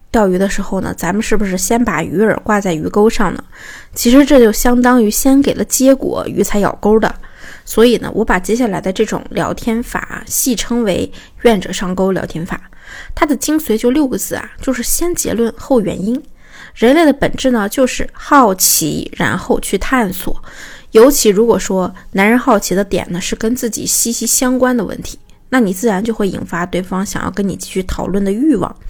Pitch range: 195-255 Hz